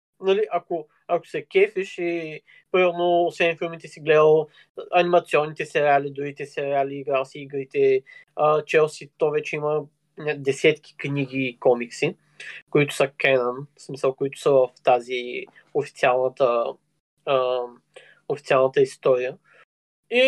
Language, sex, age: Bulgarian, male, 20-39